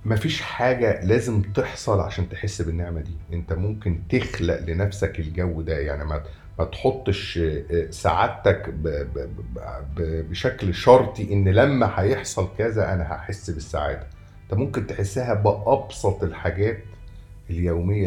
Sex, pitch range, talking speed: male, 85-105 Hz, 115 wpm